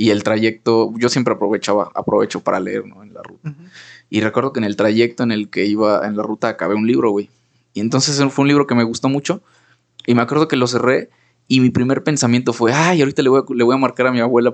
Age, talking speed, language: 20-39, 255 wpm, Spanish